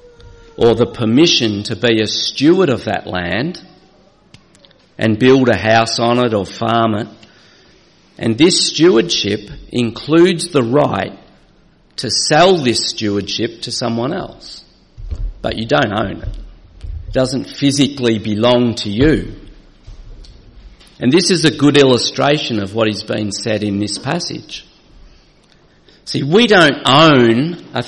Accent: Australian